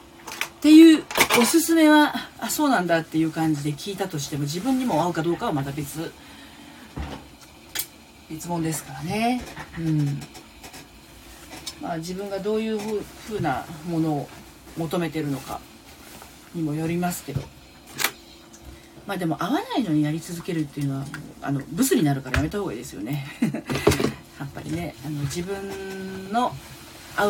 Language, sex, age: Japanese, female, 40-59